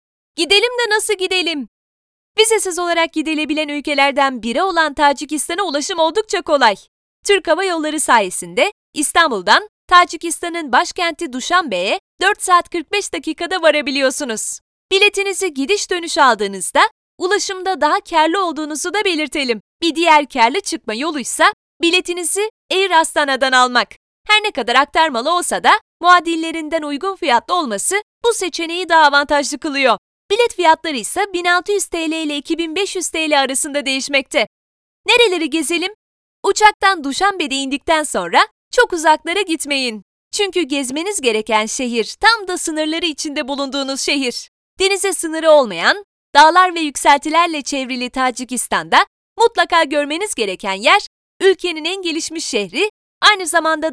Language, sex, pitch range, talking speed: Turkish, female, 285-375 Hz, 120 wpm